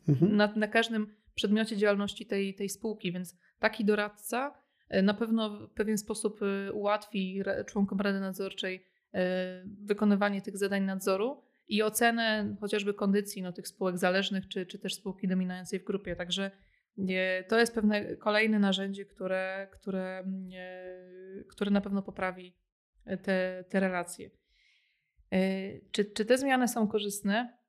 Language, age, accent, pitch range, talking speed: Polish, 20-39, native, 190-210 Hz, 125 wpm